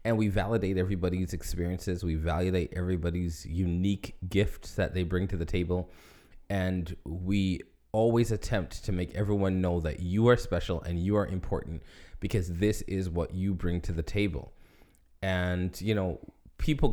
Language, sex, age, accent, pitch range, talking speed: English, male, 20-39, American, 90-110 Hz, 160 wpm